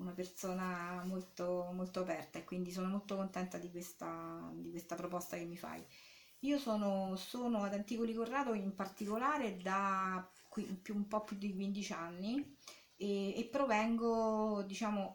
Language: Italian